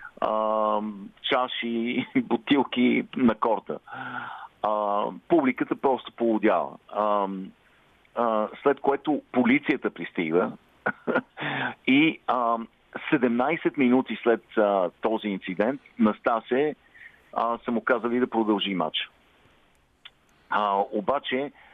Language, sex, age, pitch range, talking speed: Bulgarian, male, 50-69, 105-135 Hz, 70 wpm